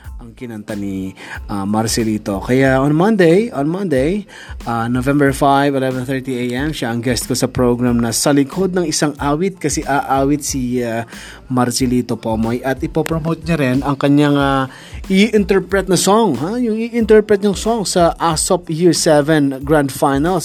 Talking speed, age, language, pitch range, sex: 150 wpm, 20-39, Filipino, 130-165 Hz, male